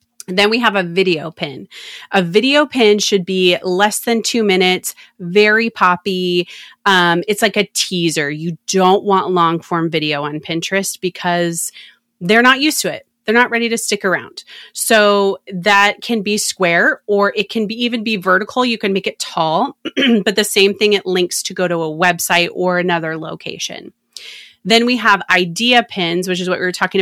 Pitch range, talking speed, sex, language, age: 175-210 Hz, 185 wpm, female, English, 30-49